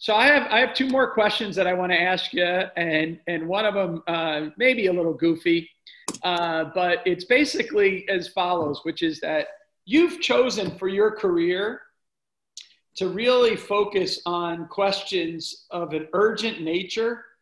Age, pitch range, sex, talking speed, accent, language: 40-59, 165-200 Hz, male, 160 wpm, American, English